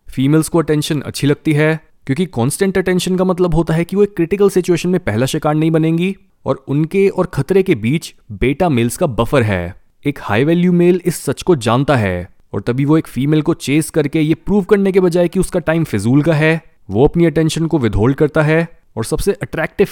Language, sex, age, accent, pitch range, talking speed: Hindi, male, 20-39, native, 125-175 Hz, 215 wpm